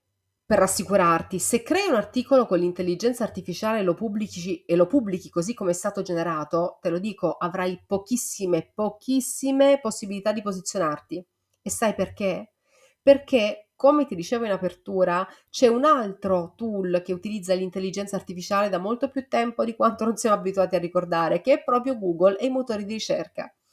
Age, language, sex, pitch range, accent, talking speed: 30-49, Italian, female, 175-230 Hz, native, 160 wpm